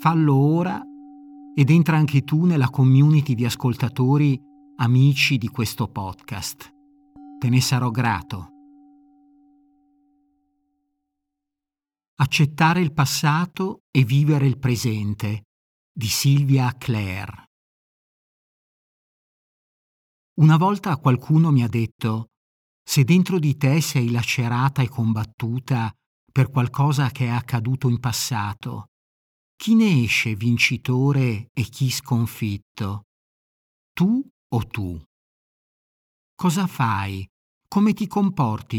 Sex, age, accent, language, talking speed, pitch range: male, 50-69, native, Italian, 100 wpm, 115-150 Hz